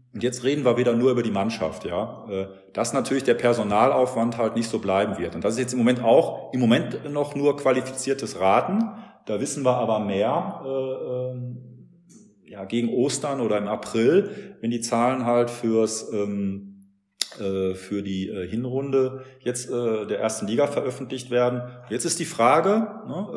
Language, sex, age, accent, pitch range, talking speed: German, male, 40-59, German, 110-135 Hz, 170 wpm